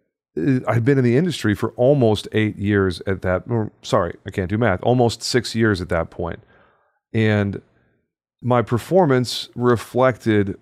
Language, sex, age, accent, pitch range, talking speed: English, male, 40-59, American, 95-120 Hz, 145 wpm